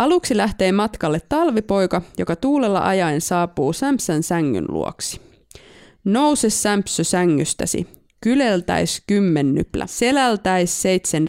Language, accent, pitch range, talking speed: Finnish, native, 175-225 Hz, 95 wpm